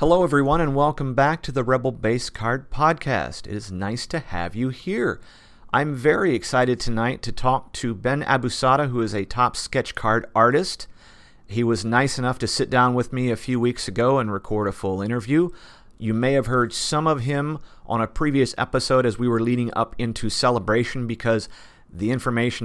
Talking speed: 195 wpm